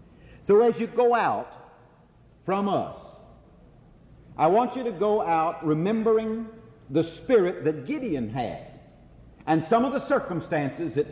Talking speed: 135 wpm